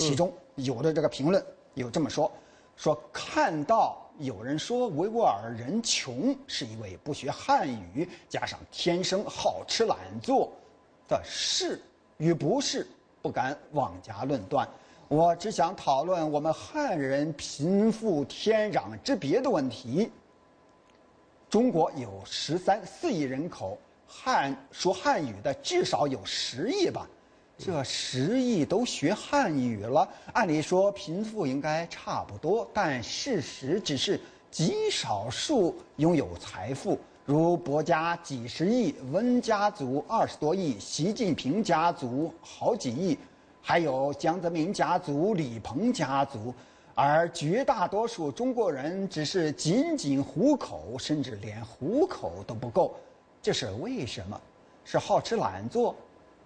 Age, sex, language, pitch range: 50-69, male, English, 145-230 Hz